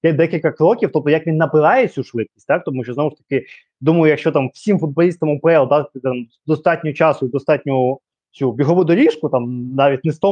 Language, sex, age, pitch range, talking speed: Ukrainian, male, 20-39, 140-185 Hz, 200 wpm